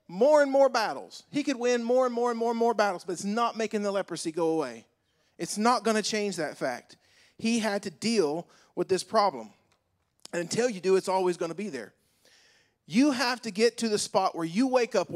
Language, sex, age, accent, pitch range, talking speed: English, male, 40-59, American, 185-255 Hz, 230 wpm